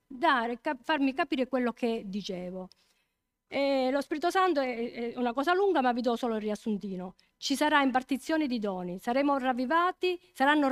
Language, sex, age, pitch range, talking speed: Italian, female, 50-69, 225-295 Hz, 170 wpm